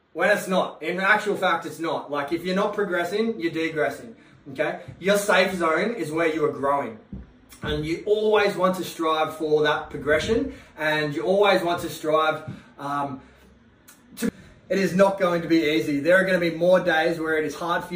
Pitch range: 150-175 Hz